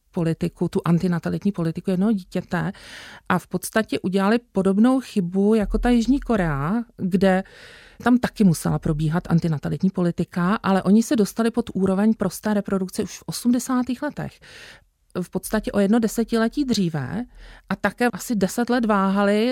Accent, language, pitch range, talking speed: native, Czech, 180-220 Hz, 145 wpm